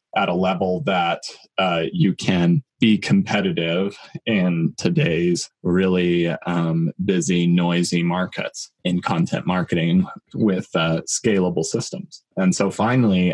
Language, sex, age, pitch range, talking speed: English, male, 20-39, 85-105 Hz, 115 wpm